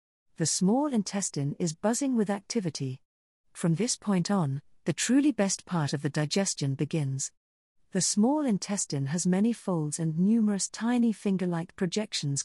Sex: female